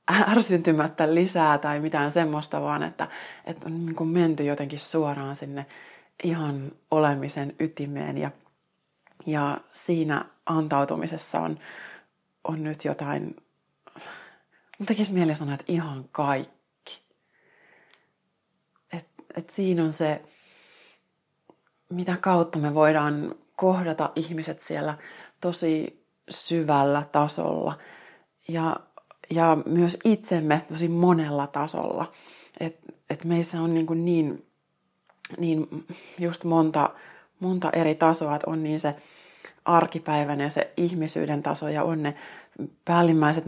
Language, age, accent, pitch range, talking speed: Finnish, 30-49, native, 150-170 Hz, 105 wpm